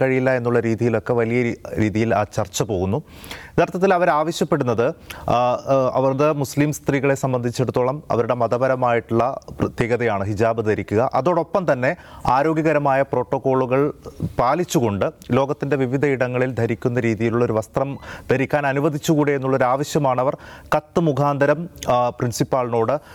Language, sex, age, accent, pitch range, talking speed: English, male, 30-49, Indian, 120-145 Hz, 95 wpm